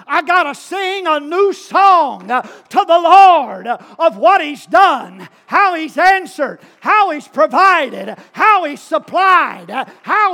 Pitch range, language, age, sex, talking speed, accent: 250-375 Hz, English, 50-69, male, 140 wpm, American